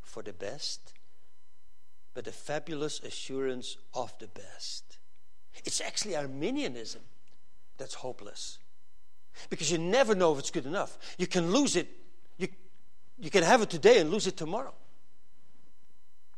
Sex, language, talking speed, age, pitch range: male, English, 135 wpm, 60-79, 140-210 Hz